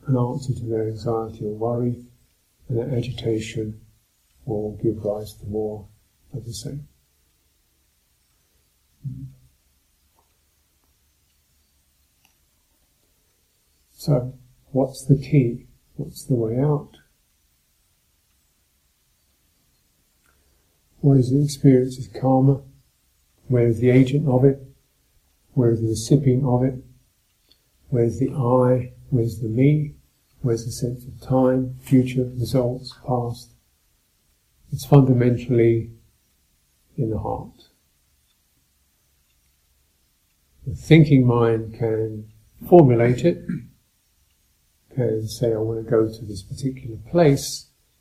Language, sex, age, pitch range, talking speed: English, male, 50-69, 75-125 Hz, 100 wpm